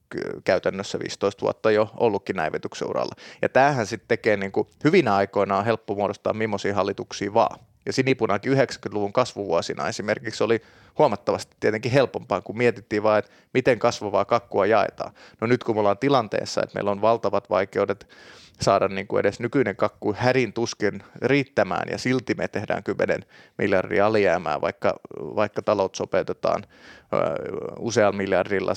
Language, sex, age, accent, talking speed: Finnish, male, 30-49, native, 140 wpm